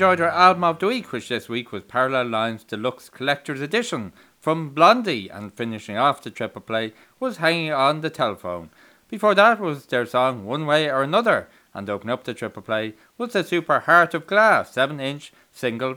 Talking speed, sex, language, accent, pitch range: 195 wpm, male, English, Irish, 120-165 Hz